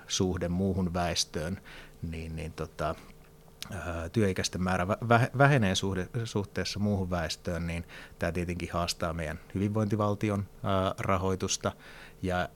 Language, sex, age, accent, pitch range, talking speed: Finnish, male, 30-49, native, 85-100 Hz, 95 wpm